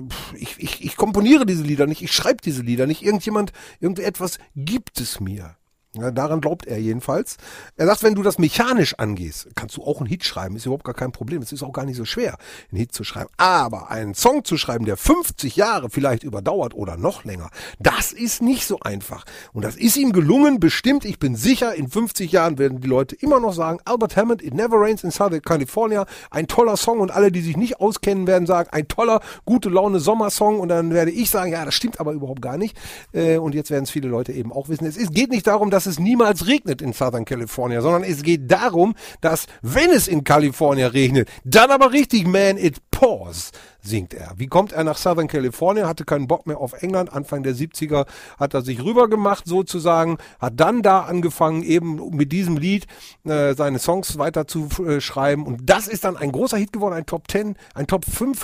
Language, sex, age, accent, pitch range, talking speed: German, male, 40-59, German, 140-205 Hz, 215 wpm